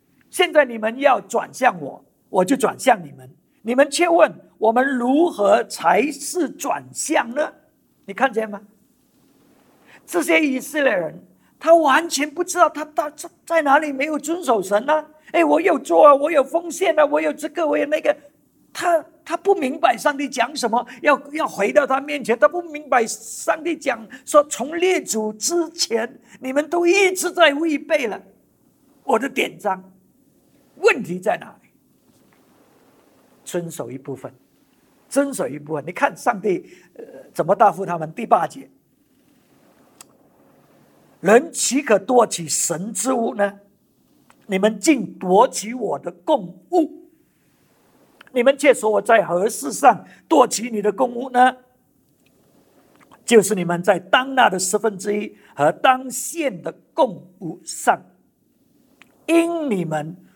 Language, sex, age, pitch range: English, male, 50-69, 220-315 Hz